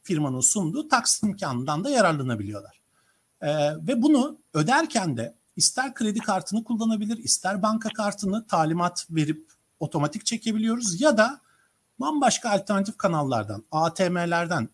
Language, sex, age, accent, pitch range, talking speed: Turkish, male, 50-69, native, 160-230 Hz, 115 wpm